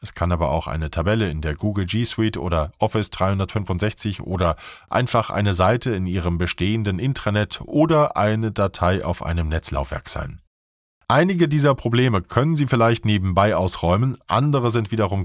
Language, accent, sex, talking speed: German, German, male, 155 wpm